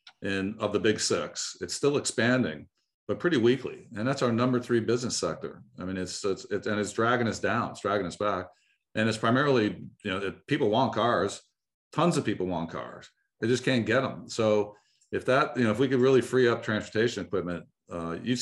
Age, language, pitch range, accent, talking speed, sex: 50-69, English, 95-120 Hz, American, 215 wpm, male